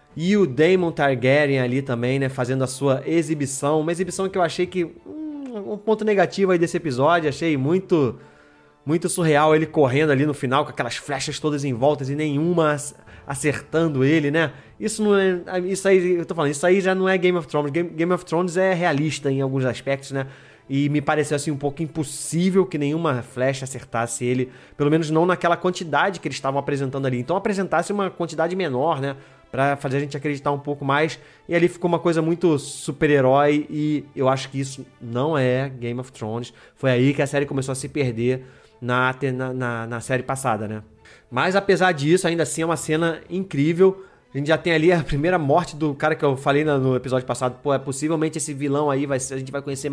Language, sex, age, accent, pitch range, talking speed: Portuguese, male, 20-39, Brazilian, 135-165 Hz, 210 wpm